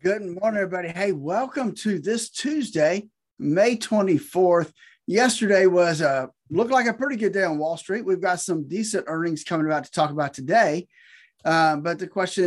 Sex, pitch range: male, 150-205 Hz